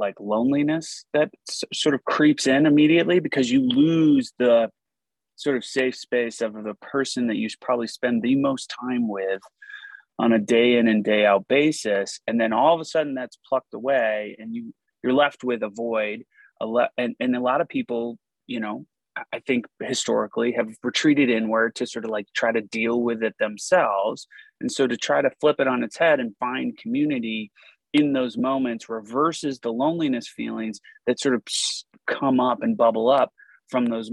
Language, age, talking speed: English, 30-49, 185 wpm